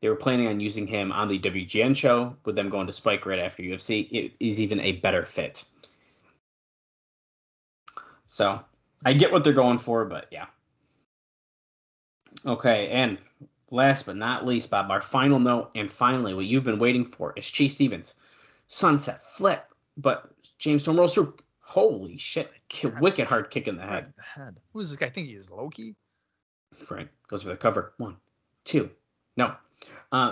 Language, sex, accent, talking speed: English, male, American, 170 wpm